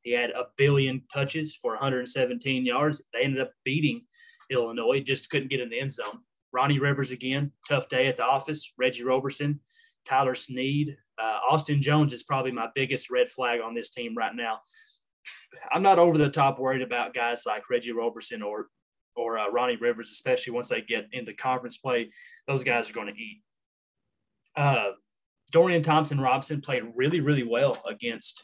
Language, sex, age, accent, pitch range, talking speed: English, male, 20-39, American, 120-160 Hz, 175 wpm